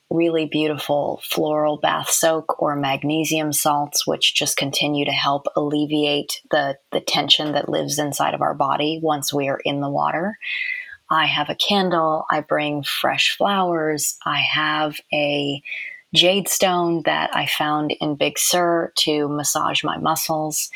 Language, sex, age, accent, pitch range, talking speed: English, female, 20-39, American, 145-165 Hz, 150 wpm